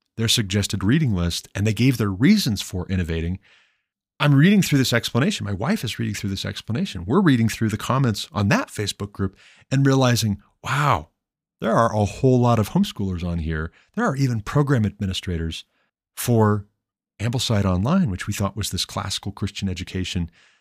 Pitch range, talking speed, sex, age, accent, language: 95-130 Hz, 175 wpm, male, 40-59, American, English